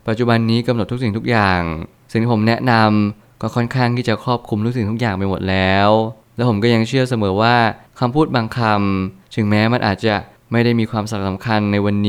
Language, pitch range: Thai, 100-120 Hz